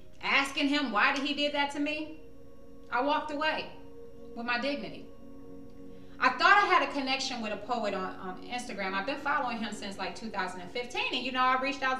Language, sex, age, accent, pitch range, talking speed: English, female, 30-49, American, 215-270 Hz, 200 wpm